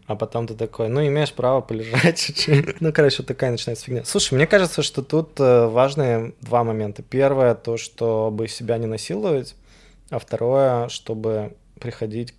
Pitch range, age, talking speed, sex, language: 110-135 Hz, 20-39, 160 wpm, male, Russian